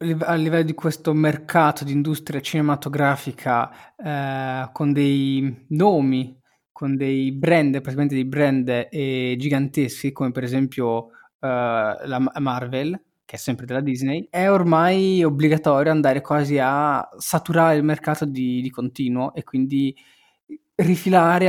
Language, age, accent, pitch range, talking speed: Italian, 20-39, native, 130-155 Hz, 125 wpm